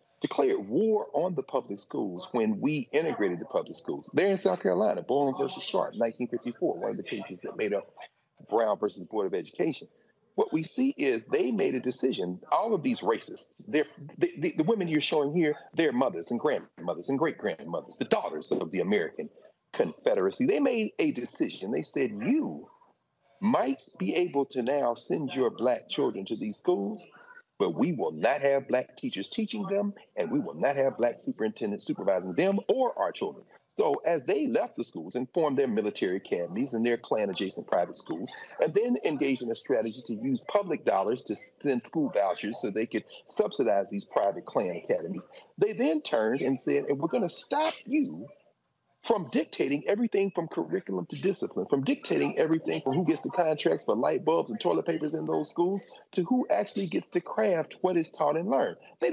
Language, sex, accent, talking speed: English, male, American, 195 wpm